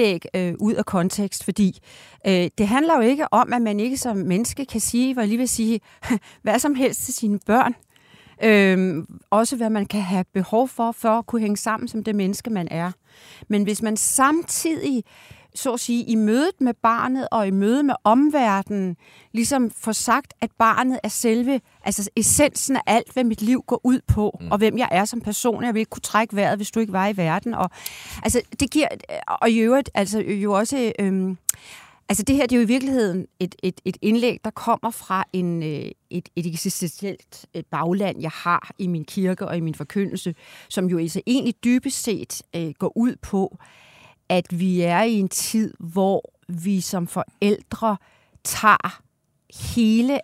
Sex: female